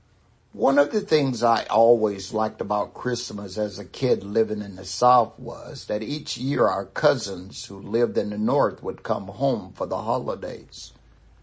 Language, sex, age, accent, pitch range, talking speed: English, male, 60-79, American, 105-130 Hz, 175 wpm